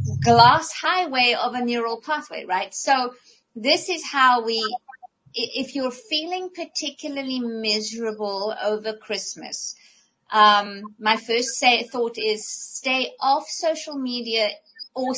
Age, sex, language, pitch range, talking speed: 50-69, female, English, 215-270 Hz, 120 wpm